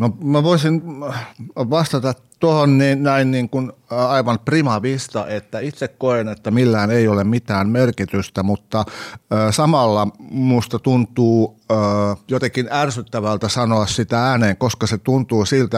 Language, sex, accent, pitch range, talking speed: Finnish, male, native, 100-120 Hz, 125 wpm